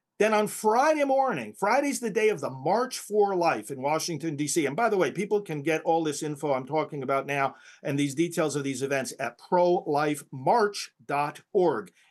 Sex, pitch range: male, 150-200 Hz